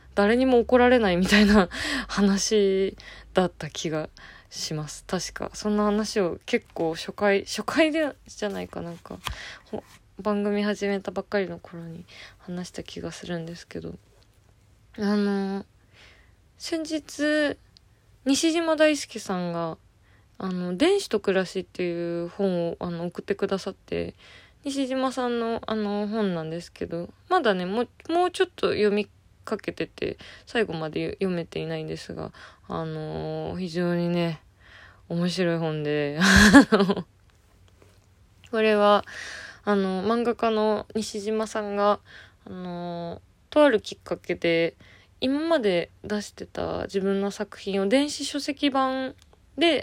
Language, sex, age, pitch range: Japanese, female, 20-39, 165-225 Hz